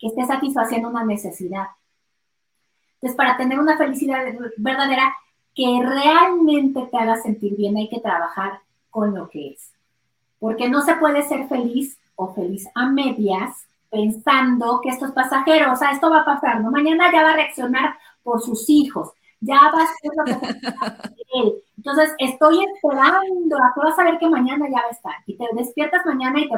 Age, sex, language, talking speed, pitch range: 30-49, female, Spanish, 195 wpm, 230-290 Hz